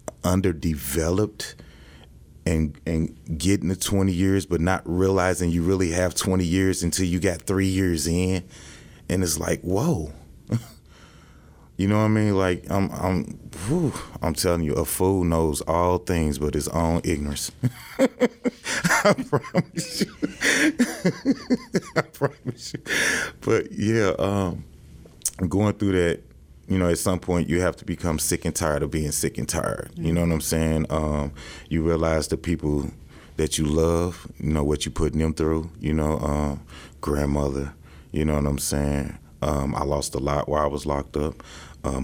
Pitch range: 75-90 Hz